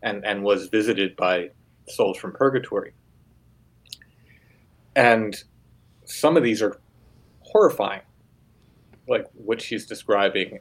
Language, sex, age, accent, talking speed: English, male, 30-49, American, 100 wpm